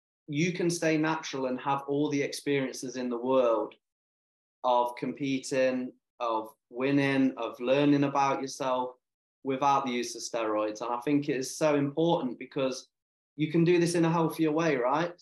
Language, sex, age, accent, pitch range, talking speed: English, male, 20-39, British, 125-145 Hz, 165 wpm